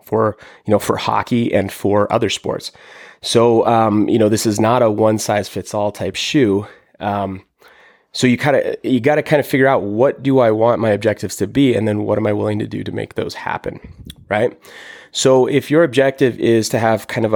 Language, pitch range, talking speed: English, 105-120 Hz, 225 wpm